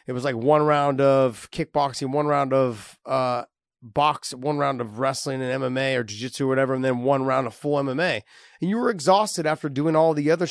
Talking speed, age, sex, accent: 215 wpm, 30-49, male, American